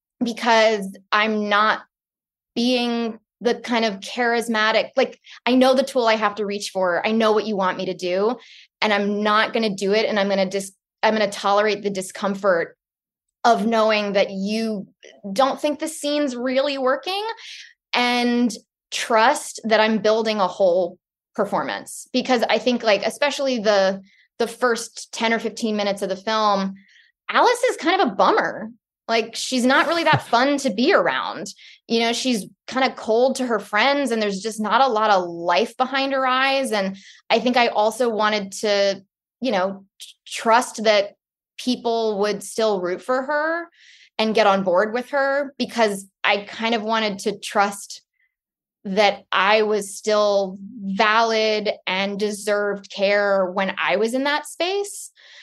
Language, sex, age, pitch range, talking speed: English, female, 20-39, 205-250 Hz, 170 wpm